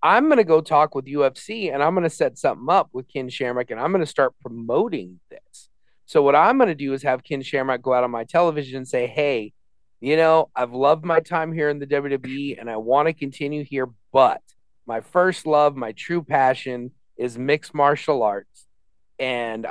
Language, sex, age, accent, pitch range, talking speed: English, male, 40-59, American, 135-165 Hz, 215 wpm